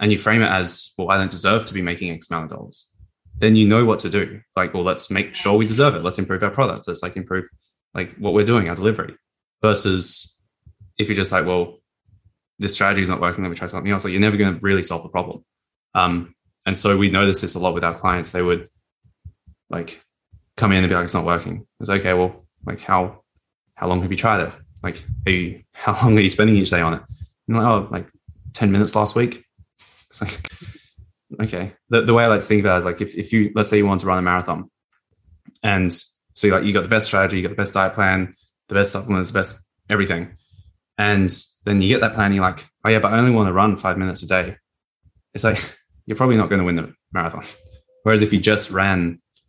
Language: English